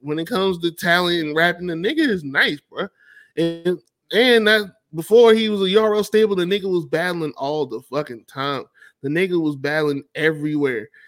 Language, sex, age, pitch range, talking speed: English, male, 20-39, 140-170 Hz, 185 wpm